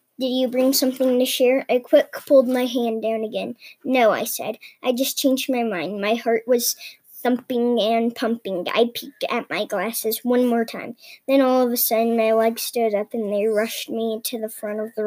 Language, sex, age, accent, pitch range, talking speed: English, male, 10-29, American, 230-265 Hz, 210 wpm